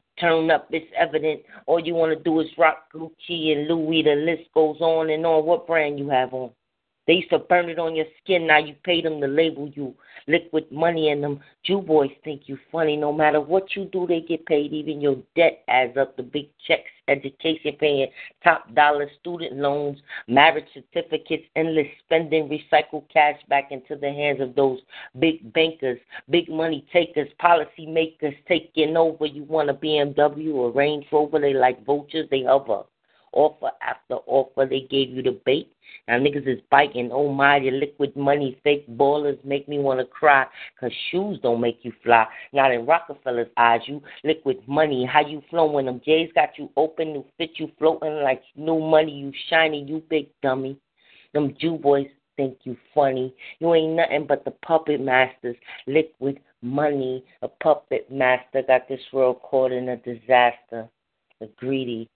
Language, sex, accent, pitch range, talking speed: English, female, American, 135-160 Hz, 180 wpm